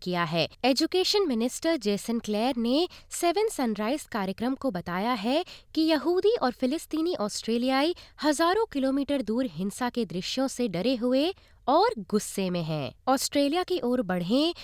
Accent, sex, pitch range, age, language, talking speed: native, female, 215-325 Hz, 20-39, Hindi, 145 wpm